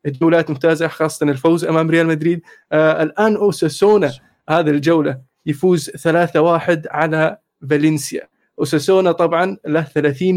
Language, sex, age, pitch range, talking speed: Arabic, male, 20-39, 155-175 Hz, 110 wpm